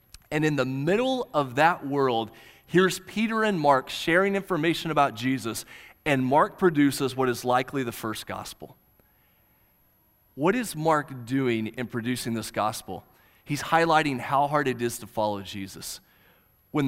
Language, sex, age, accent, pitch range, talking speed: English, male, 30-49, American, 120-185 Hz, 150 wpm